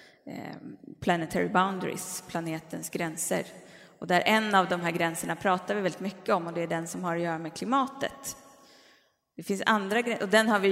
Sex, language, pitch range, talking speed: female, Swedish, 175-215 Hz, 190 wpm